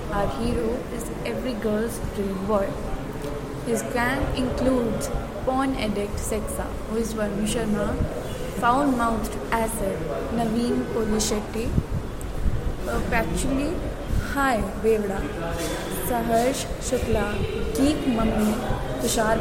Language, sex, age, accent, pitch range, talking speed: English, female, 20-39, Indian, 215-250 Hz, 90 wpm